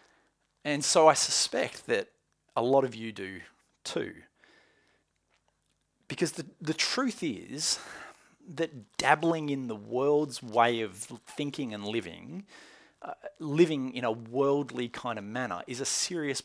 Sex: male